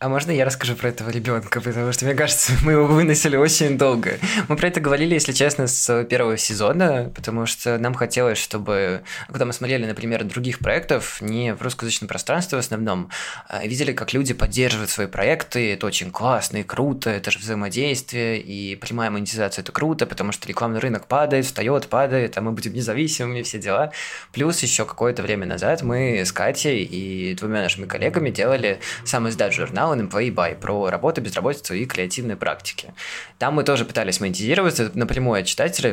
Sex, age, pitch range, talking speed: male, 20-39, 110-135 Hz, 175 wpm